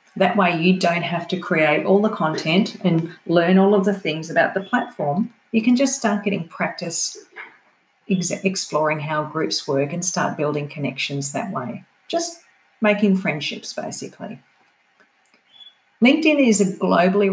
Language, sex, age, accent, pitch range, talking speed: English, female, 40-59, Australian, 155-200 Hz, 150 wpm